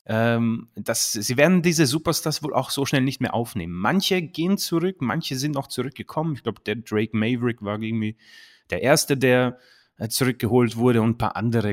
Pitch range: 105-135 Hz